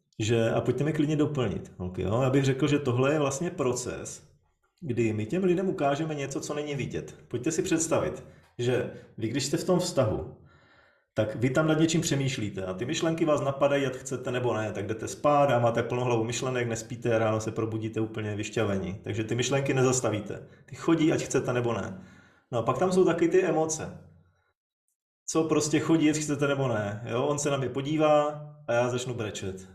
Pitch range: 115-150 Hz